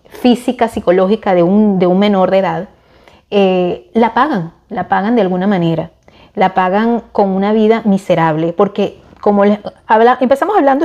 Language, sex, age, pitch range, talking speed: Spanish, female, 30-49, 175-225 Hz, 160 wpm